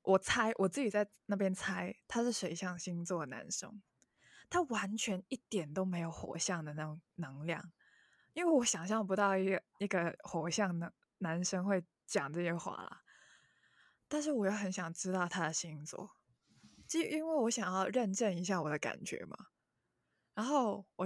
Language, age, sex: Chinese, 20-39, female